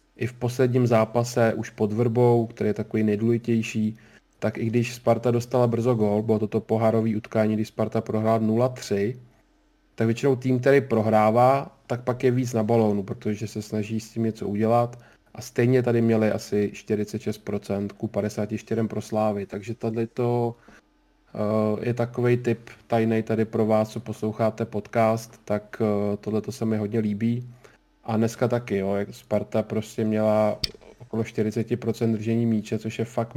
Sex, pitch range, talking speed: male, 110-120 Hz, 155 wpm